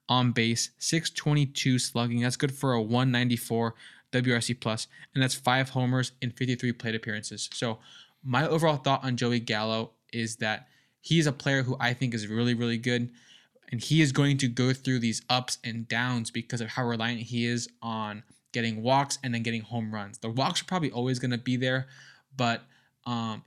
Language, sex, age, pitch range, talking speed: English, male, 20-39, 115-130 Hz, 190 wpm